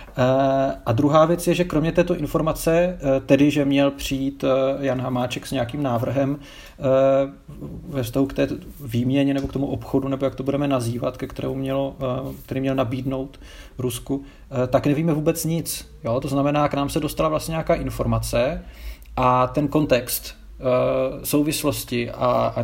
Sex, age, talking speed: male, 40-59, 145 wpm